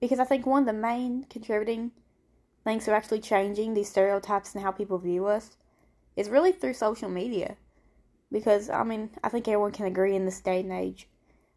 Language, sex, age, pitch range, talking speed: English, female, 10-29, 195-235 Hz, 190 wpm